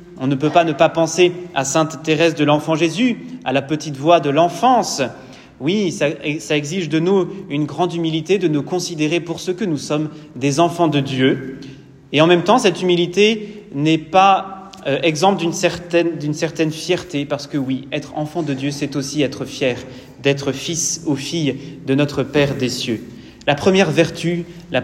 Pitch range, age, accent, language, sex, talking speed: 140-175 Hz, 30-49, French, French, male, 190 wpm